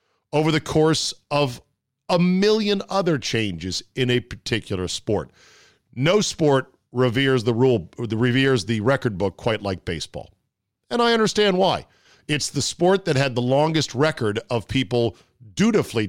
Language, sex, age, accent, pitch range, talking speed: English, male, 50-69, American, 115-155 Hz, 155 wpm